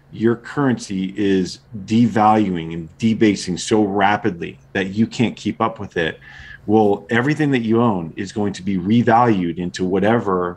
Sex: male